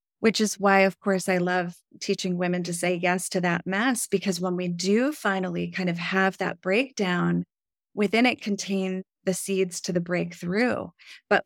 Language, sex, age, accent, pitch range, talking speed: English, female, 30-49, American, 175-205 Hz, 180 wpm